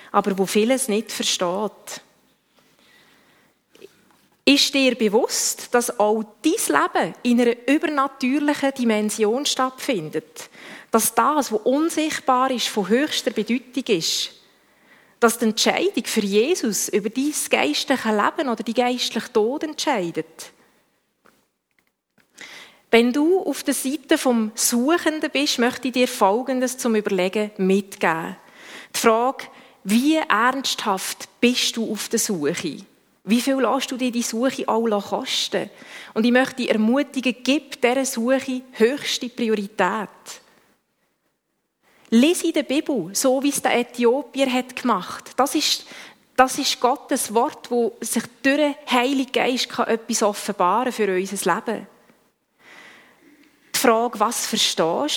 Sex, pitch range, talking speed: female, 220-275 Hz, 125 wpm